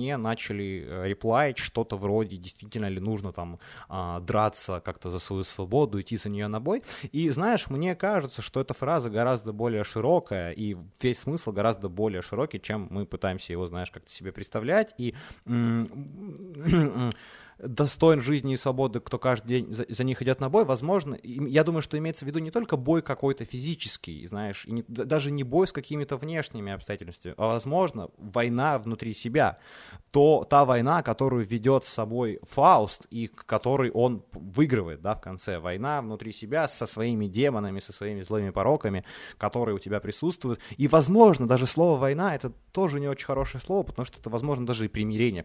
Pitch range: 105-140 Hz